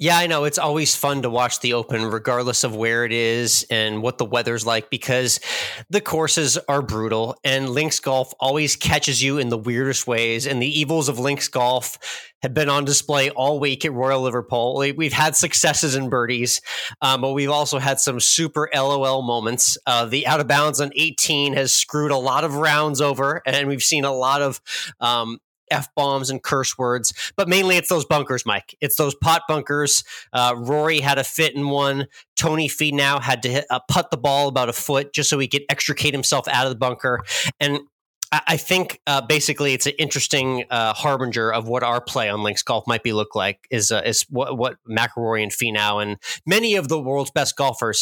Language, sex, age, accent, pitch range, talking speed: English, male, 30-49, American, 120-150 Hz, 205 wpm